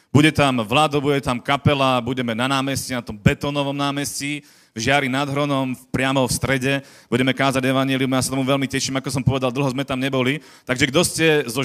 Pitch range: 115-140 Hz